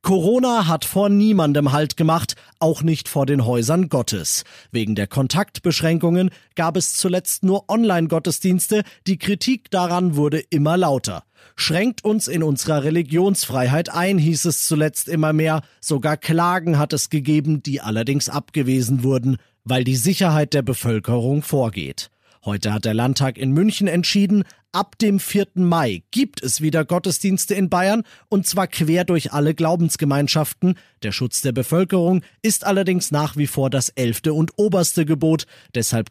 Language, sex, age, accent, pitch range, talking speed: German, male, 40-59, German, 135-185 Hz, 150 wpm